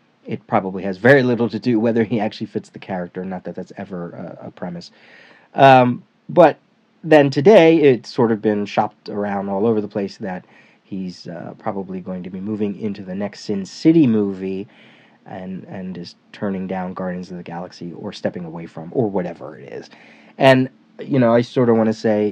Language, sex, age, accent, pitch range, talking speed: English, male, 30-49, American, 100-135 Hz, 200 wpm